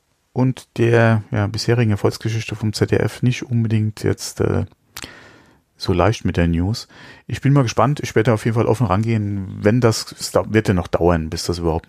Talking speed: 190 wpm